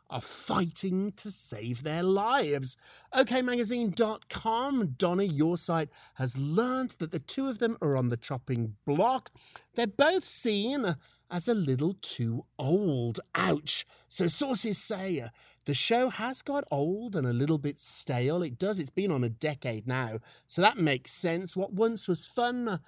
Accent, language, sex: British, English, male